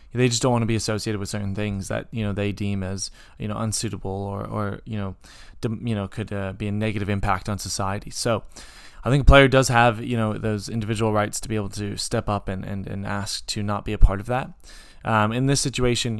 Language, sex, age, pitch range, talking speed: English, male, 20-39, 100-115 Hz, 245 wpm